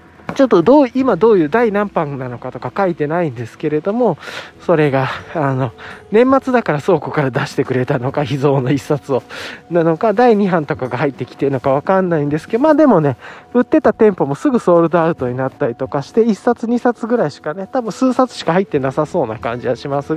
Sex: male